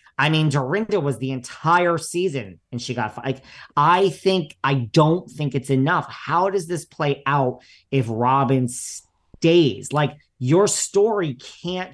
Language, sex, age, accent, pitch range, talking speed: English, male, 40-59, American, 125-160 Hz, 150 wpm